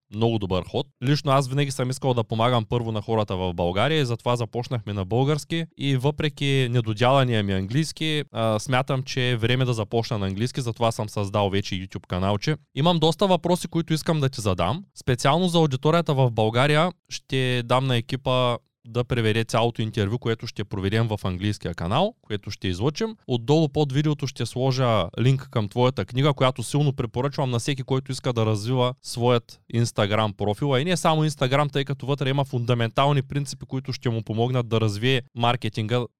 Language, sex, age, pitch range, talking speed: Bulgarian, male, 20-39, 110-140 Hz, 180 wpm